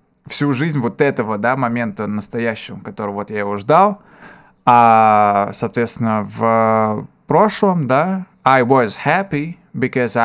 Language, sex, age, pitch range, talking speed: Russian, male, 20-39, 115-155 Hz, 125 wpm